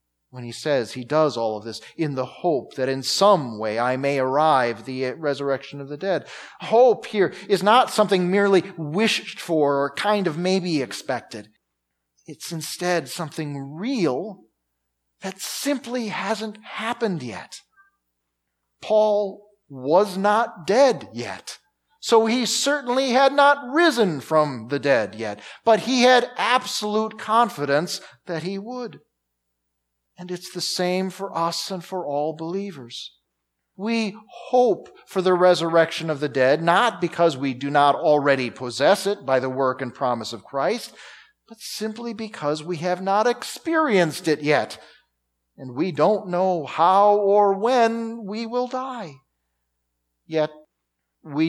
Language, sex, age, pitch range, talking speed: English, male, 40-59, 130-210 Hz, 140 wpm